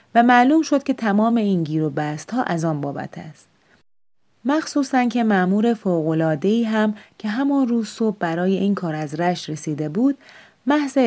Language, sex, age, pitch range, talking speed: Persian, female, 30-49, 160-225 Hz, 170 wpm